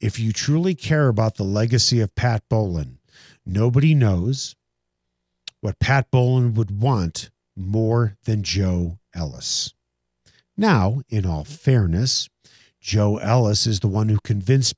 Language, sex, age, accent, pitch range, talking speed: English, male, 50-69, American, 100-145 Hz, 130 wpm